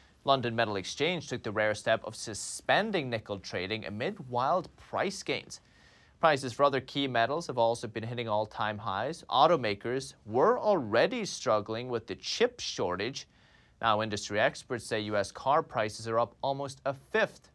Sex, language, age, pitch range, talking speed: male, English, 30-49, 115-160 Hz, 155 wpm